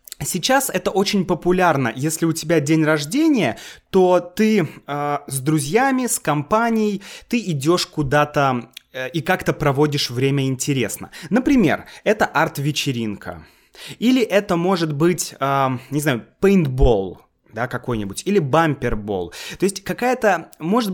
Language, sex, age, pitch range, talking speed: Russian, male, 20-39, 135-180 Hz, 125 wpm